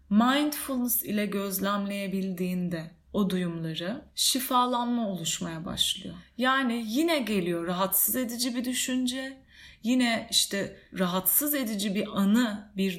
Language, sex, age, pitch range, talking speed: Turkish, female, 30-49, 190-250 Hz, 100 wpm